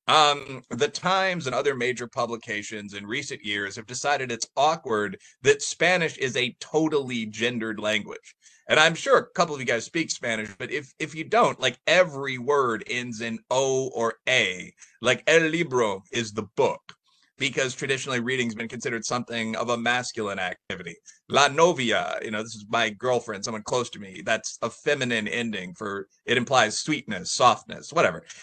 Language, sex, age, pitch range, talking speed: English, male, 30-49, 120-160 Hz, 175 wpm